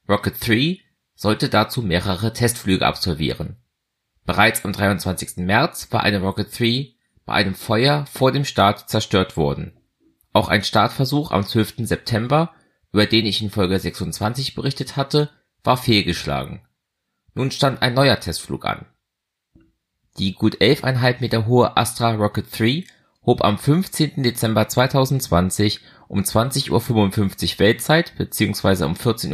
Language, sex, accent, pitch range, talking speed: German, male, German, 100-140 Hz, 135 wpm